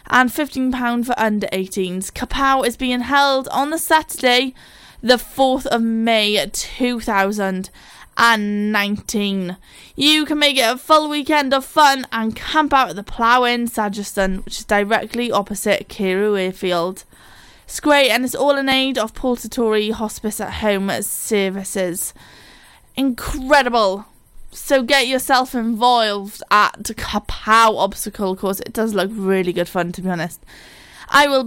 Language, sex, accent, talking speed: English, female, British, 135 wpm